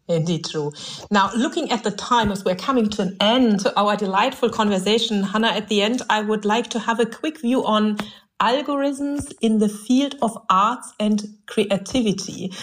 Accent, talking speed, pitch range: German, 180 wpm, 200-245 Hz